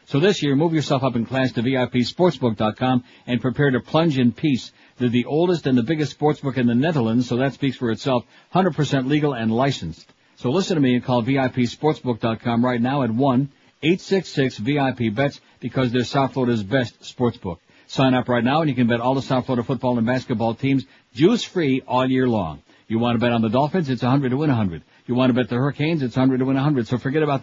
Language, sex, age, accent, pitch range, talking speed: English, male, 60-79, American, 125-145 Hz, 215 wpm